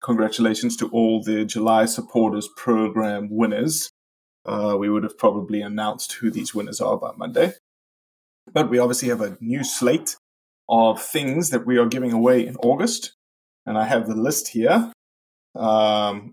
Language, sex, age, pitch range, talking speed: English, male, 20-39, 110-125 Hz, 160 wpm